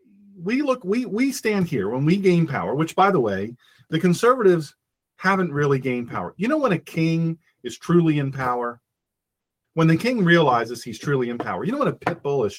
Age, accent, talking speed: 40-59, American, 210 wpm